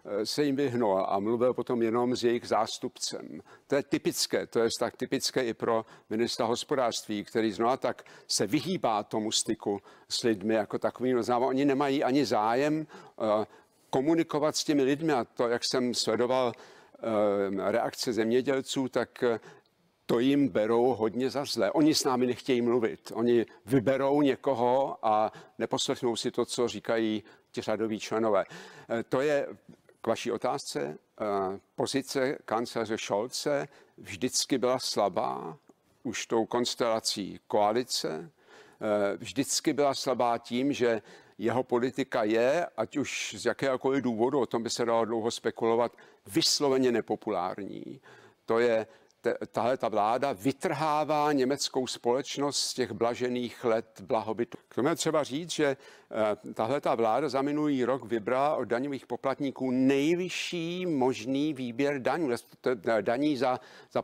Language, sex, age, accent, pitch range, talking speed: Czech, male, 50-69, native, 115-140 Hz, 130 wpm